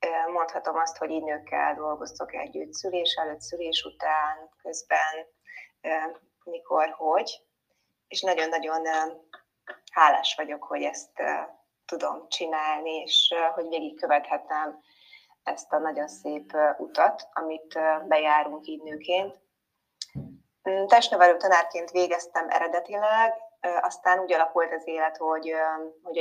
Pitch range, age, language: 160-190 Hz, 20-39, Hungarian